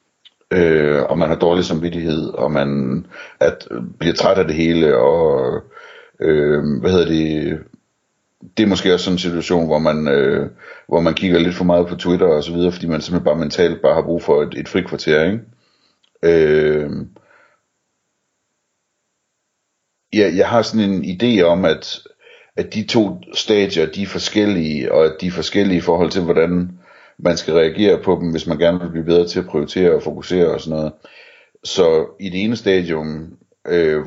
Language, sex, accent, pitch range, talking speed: Danish, male, native, 80-110 Hz, 165 wpm